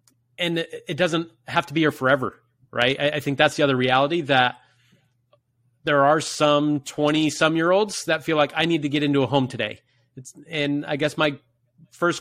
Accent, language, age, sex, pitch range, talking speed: American, English, 30-49, male, 125-150 Hz, 180 wpm